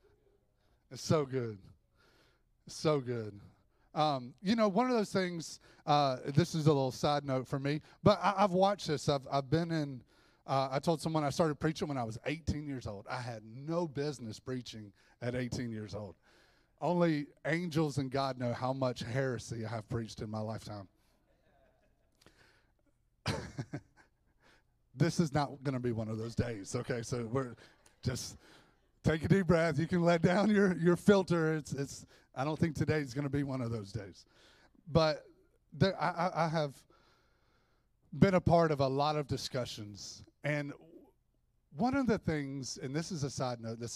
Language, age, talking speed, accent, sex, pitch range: English, 30-49, 175 wpm, American, male, 120-165 Hz